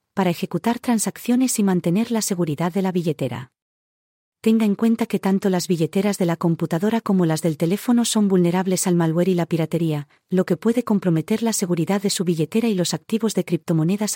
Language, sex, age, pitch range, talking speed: English, female, 40-59, 165-200 Hz, 190 wpm